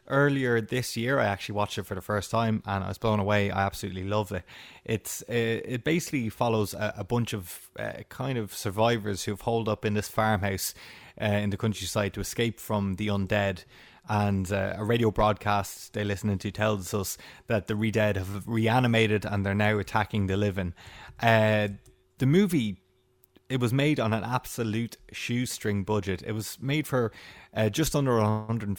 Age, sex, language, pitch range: 20-39, male, English, 100-120 Hz